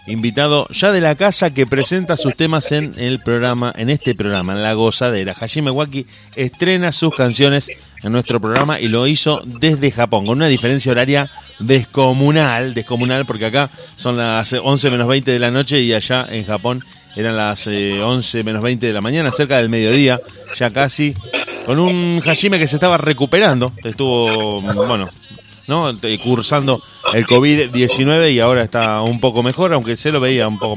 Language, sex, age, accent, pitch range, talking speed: Spanish, male, 30-49, Argentinian, 115-145 Hz, 175 wpm